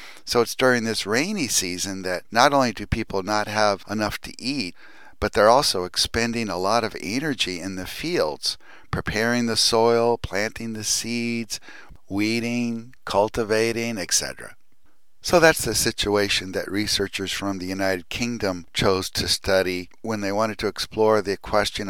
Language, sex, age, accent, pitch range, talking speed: English, male, 50-69, American, 90-115 Hz, 155 wpm